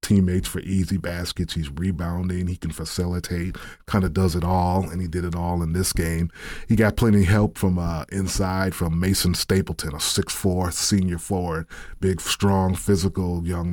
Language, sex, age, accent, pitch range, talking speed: English, male, 30-49, American, 85-95 Hz, 180 wpm